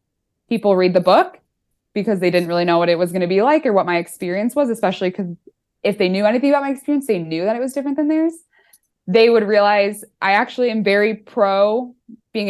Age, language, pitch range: 20-39, English, 175-235 Hz